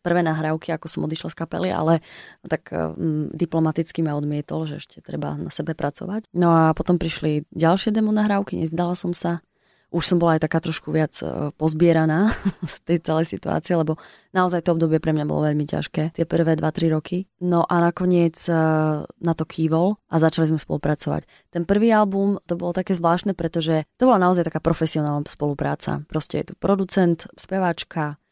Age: 20-39